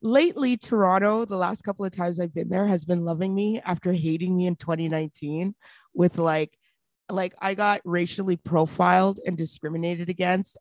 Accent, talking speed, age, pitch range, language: American, 165 wpm, 30-49, 165-195 Hz, English